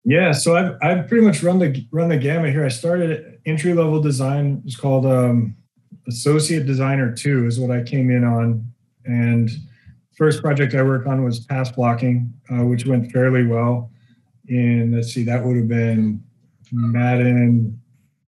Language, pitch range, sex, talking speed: English, 120-135 Hz, male, 165 wpm